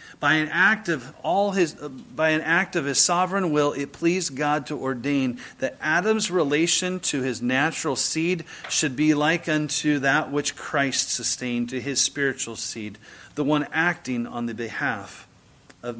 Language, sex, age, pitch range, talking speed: English, male, 40-59, 130-165 Hz, 165 wpm